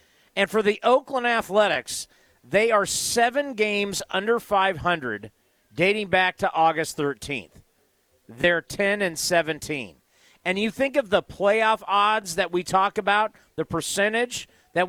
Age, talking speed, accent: 40-59, 135 wpm, American